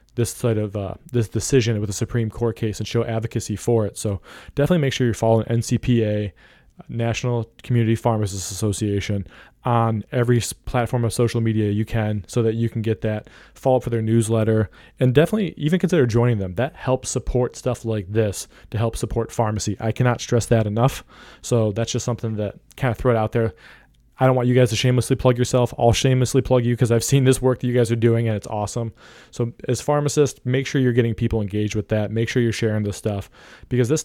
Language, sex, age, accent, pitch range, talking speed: English, male, 20-39, American, 110-125 Hz, 220 wpm